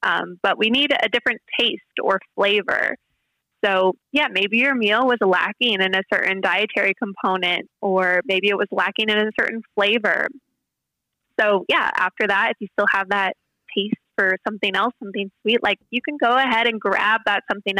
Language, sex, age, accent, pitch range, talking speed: English, female, 20-39, American, 190-225 Hz, 180 wpm